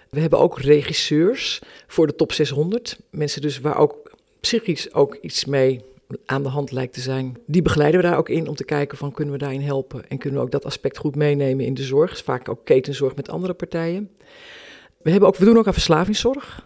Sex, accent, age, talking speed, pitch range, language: female, Dutch, 50-69, 225 wpm, 140-165 Hz, Dutch